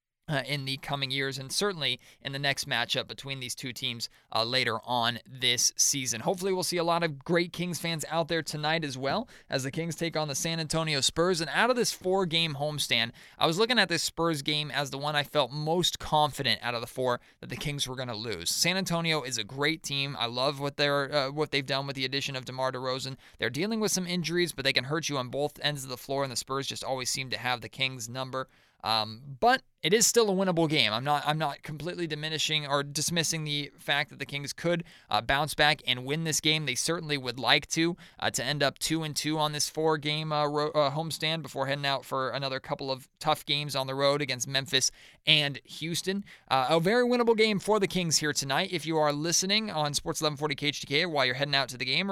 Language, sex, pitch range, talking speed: English, male, 135-165 Hz, 250 wpm